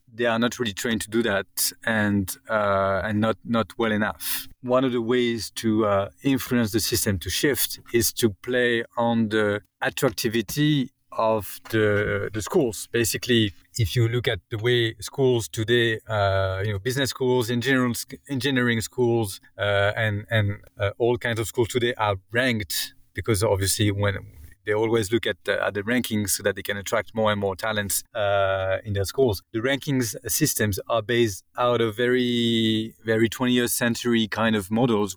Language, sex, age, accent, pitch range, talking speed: English, male, 30-49, French, 105-125 Hz, 170 wpm